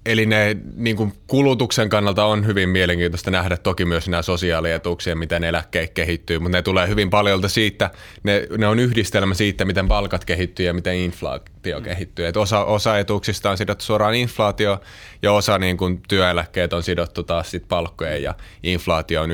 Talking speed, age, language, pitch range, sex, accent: 170 wpm, 20-39, Finnish, 85-105 Hz, male, native